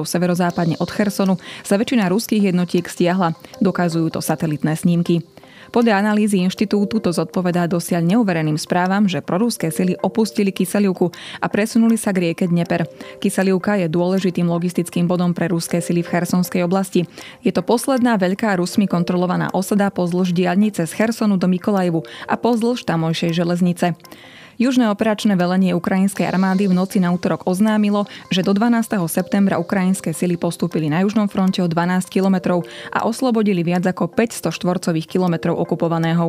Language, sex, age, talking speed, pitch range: Slovak, female, 20-39, 150 wpm, 170-200 Hz